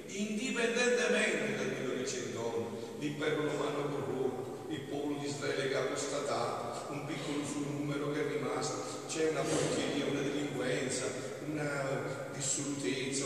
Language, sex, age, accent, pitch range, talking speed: Italian, male, 50-69, native, 130-165 Hz, 120 wpm